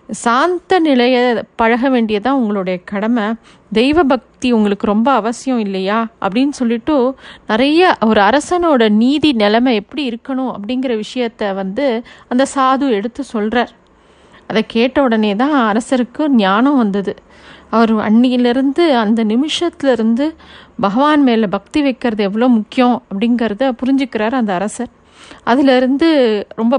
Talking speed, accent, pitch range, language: 115 wpm, native, 220-265 Hz, Tamil